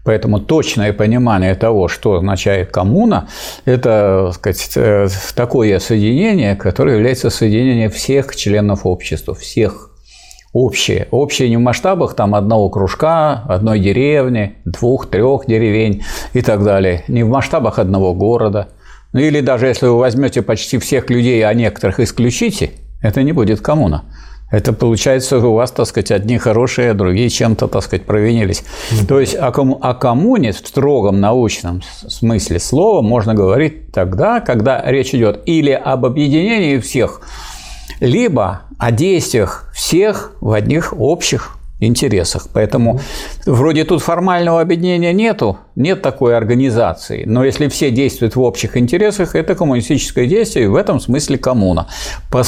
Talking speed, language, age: 140 wpm, Russian, 50-69